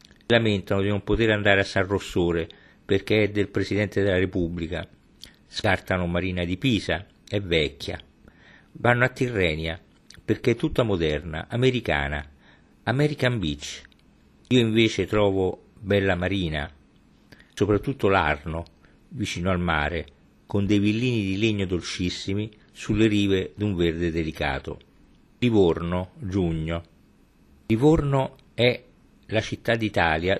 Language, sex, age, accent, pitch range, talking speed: Italian, male, 50-69, native, 85-110 Hz, 115 wpm